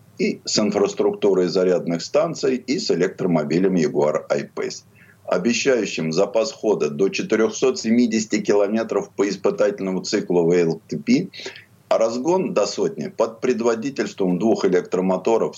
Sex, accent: male, native